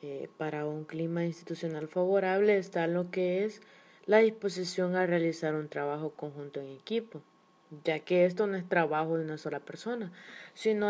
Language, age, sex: Spanish, 20-39, female